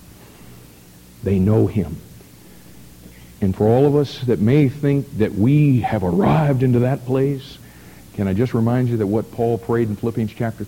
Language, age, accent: English, 60-79, American